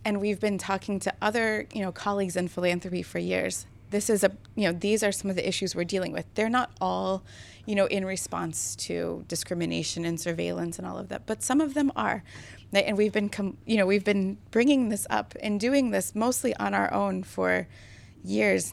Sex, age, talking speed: female, 20-39, 215 wpm